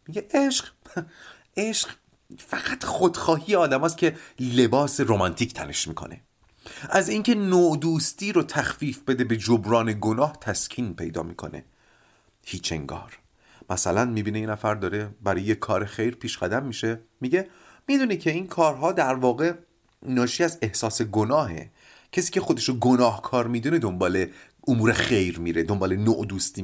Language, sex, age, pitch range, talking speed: Persian, male, 30-49, 110-175 Hz, 140 wpm